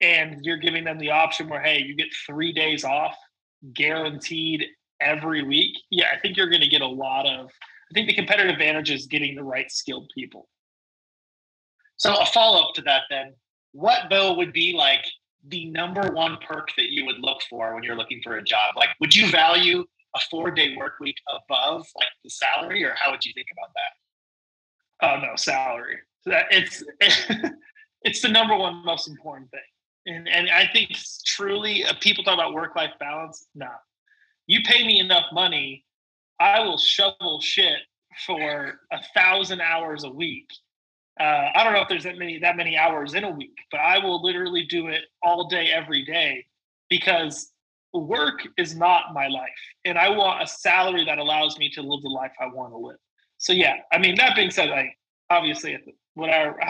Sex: male